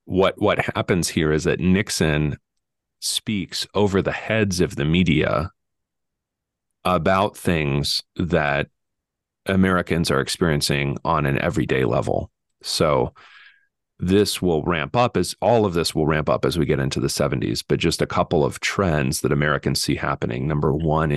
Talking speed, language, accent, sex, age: 155 wpm, English, American, male, 40-59